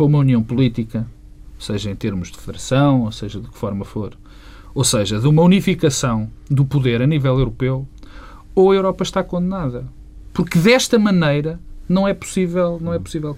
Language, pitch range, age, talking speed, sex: Portuguese, 125-165 Hz, 40-59, 160 wpm, male